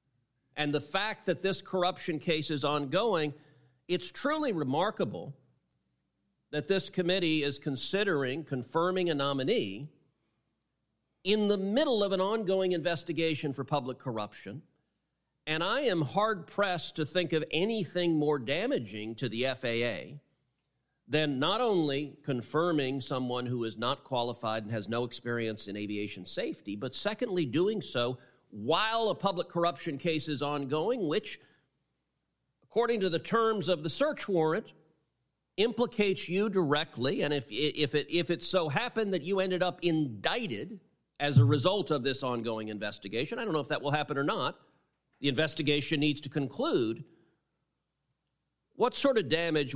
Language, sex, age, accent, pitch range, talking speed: English, male, 50-69, American, 125-175 Hz, 145 wpm